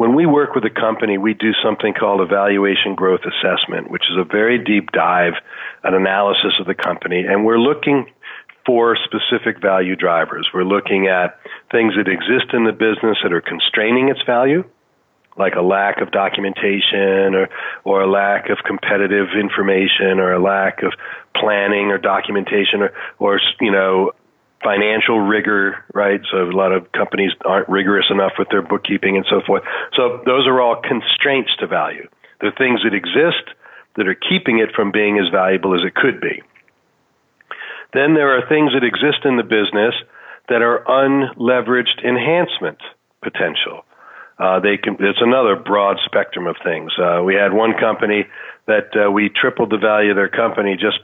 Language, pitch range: English, 95-115 Hz